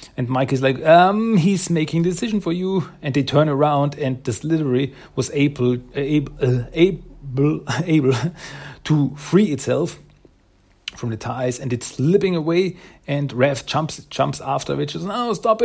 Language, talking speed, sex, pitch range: German, 170 wpm, male, 110-145 Hz